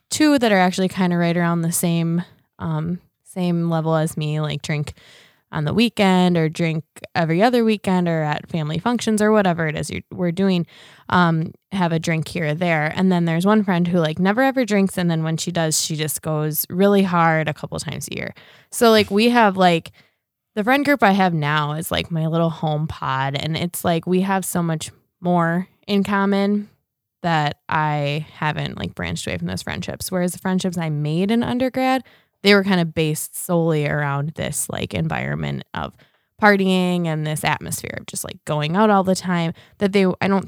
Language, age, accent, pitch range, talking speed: English, 20-39, American, 155-185 Hz, 205 wpm